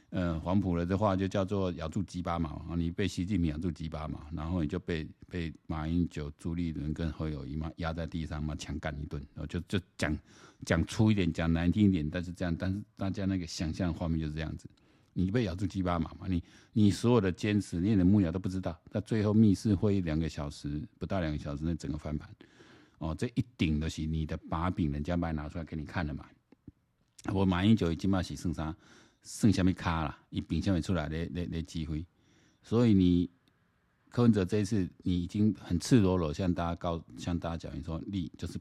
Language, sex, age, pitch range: Chinese, male, 50-69, 80-95 Hz